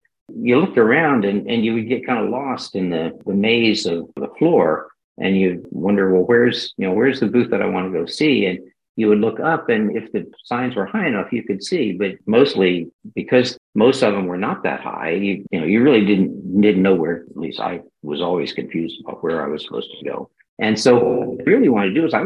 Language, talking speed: English, 245 wpm